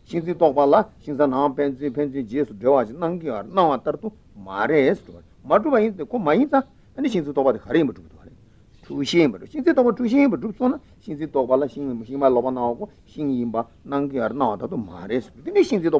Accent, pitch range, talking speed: Indian, 130-205 Hz, 100 wpm